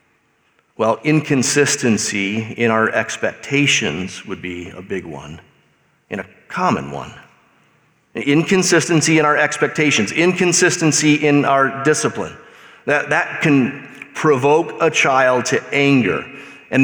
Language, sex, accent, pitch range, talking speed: English, male, American, 120-165 Hz, 110 wpm